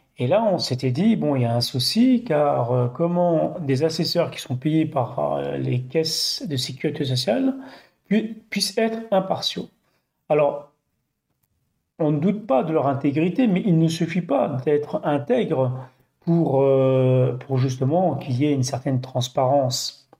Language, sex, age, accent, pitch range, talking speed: French, male, 40-59, French, 130-180 Hz, 155 wpm